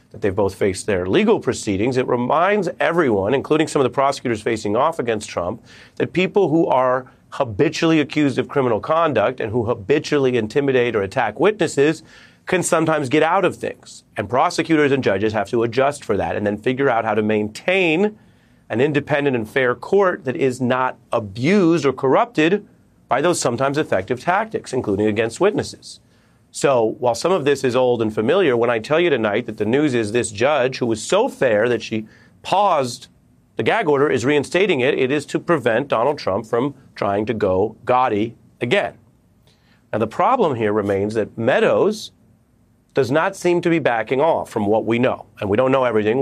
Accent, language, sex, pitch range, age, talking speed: American, English, male, 110-150 Hz, 40-59, 185 wpm